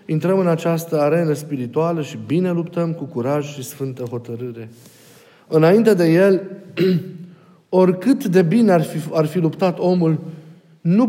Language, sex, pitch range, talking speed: Romanian, male, 155-190 Hz, 140 wpm